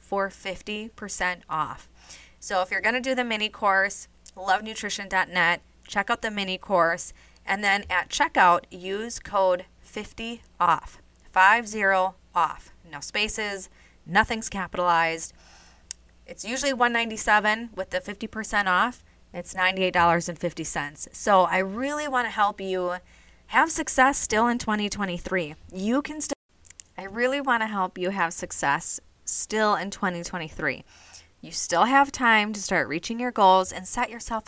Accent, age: American, 20-39